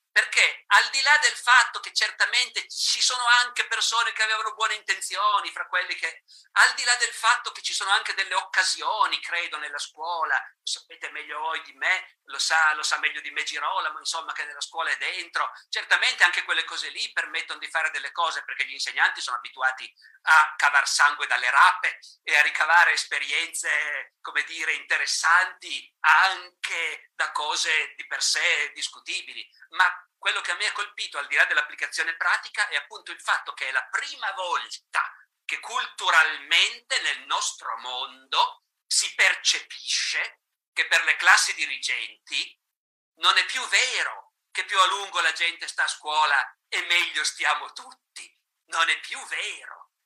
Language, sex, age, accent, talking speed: Italian, male, 50-69, native, 170 wpm